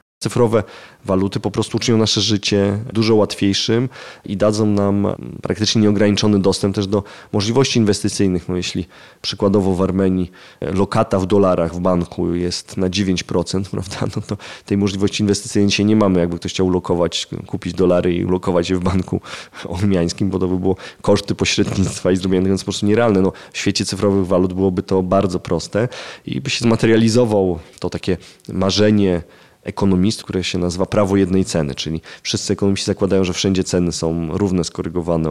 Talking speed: 165 wpm